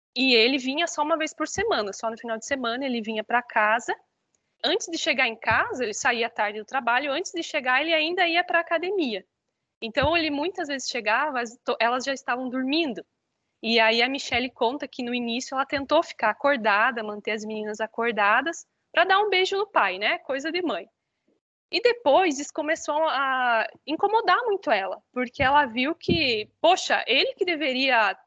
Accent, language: Brazilian, Portuguese